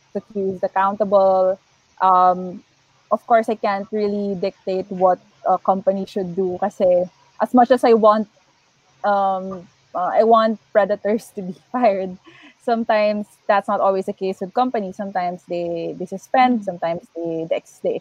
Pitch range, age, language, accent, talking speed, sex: 190-235 Hz, 20-39, English, Filipino, 145 wpm, female